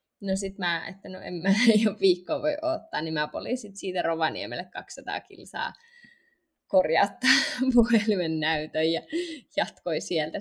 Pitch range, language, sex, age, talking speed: 175-210 Hz, Finnish, female, 20-39, 140 wpm